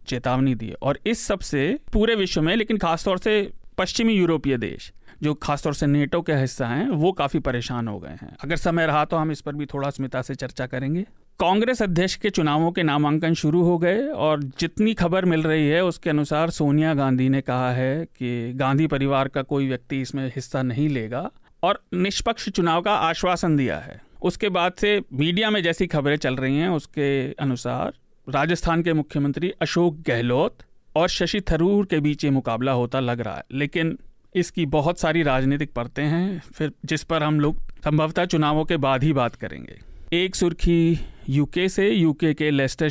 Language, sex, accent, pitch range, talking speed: Hindi, male, native, 135-175 Hz, 190 wpm